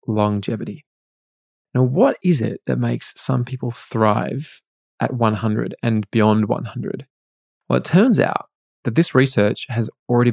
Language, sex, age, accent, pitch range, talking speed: English, male, 20-39, Australian, 105-125 Hz, 140 wpm